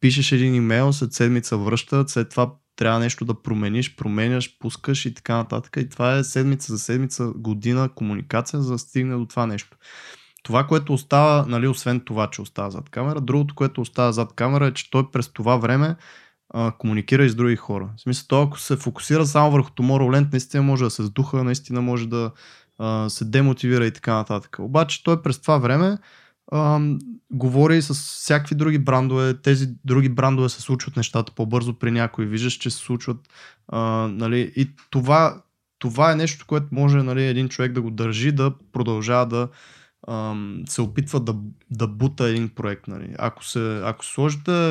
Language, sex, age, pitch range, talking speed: Bulgarian, male, 20-39, 115-140 Hz, 185 wpm